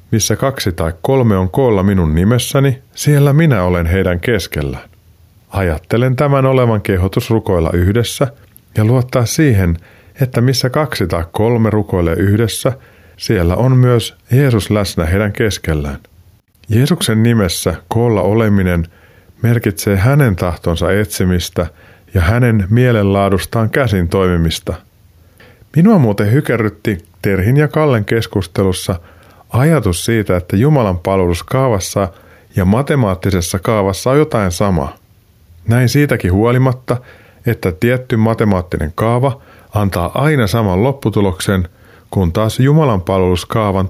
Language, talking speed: Finnish, 110 wpm